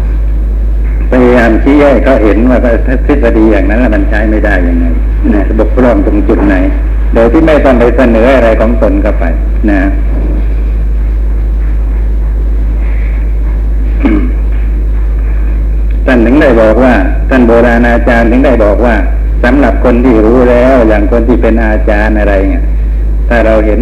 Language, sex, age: Thai, male, 60-79